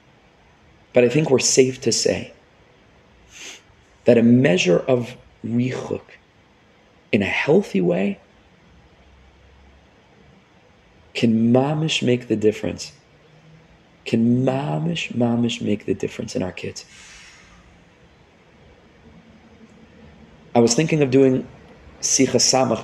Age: 30-49